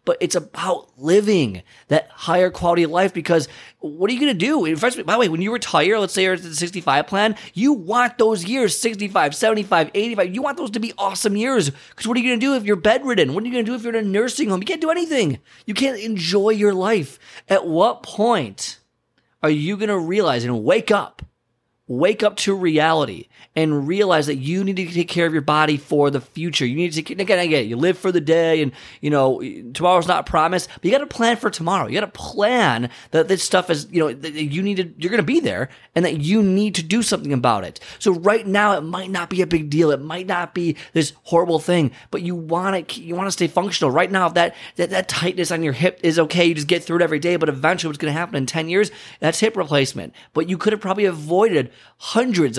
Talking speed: 245 wpm